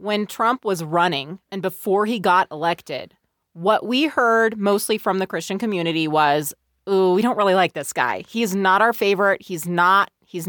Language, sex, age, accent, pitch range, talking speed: English, female, 30-49, American, 185-245 Hz, 185 wpm